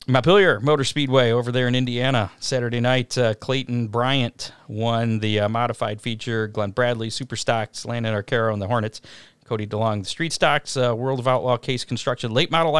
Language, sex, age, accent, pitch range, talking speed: English, male, 40-59, American, 105-130 Hz, 185 wpm